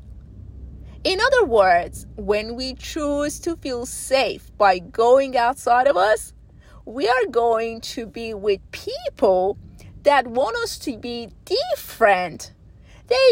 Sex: female